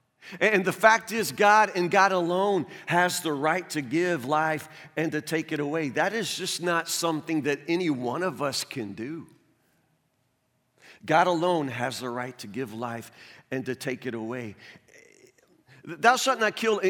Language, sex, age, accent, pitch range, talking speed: English, male, 40-59, American, 175-225 Hz, 170 wpm